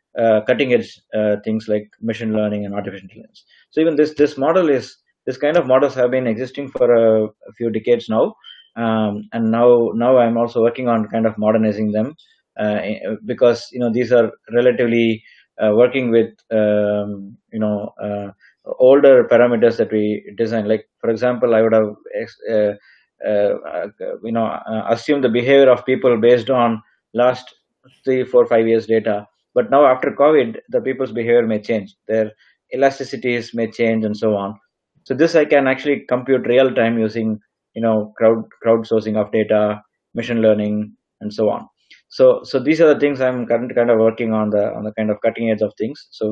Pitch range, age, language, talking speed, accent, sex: 110-125 Hz, 20-39, English, 180 wpm, Indian, male